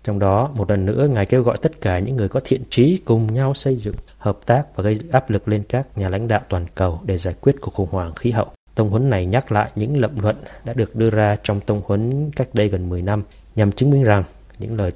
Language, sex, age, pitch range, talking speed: Vietnamese, male, 20-39, 100-115 Hz, 265 wpm